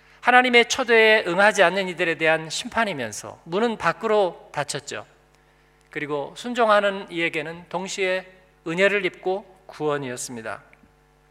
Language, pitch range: Korean, 160-205 Hz